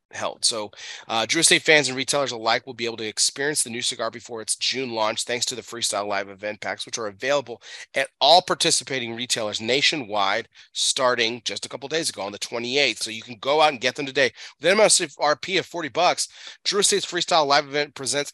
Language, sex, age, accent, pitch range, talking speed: English, male, 30-49, American, 110-140 Hz, 225 wpm